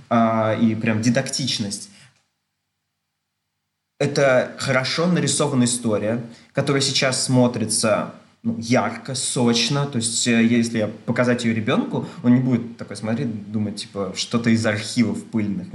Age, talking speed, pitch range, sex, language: 20-39, 120 wpm, 110-130 Hz, male, Russian